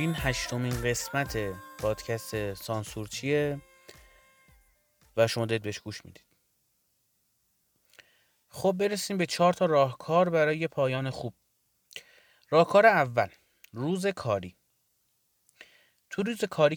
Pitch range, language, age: 110-160 Hz, Persian, 30-49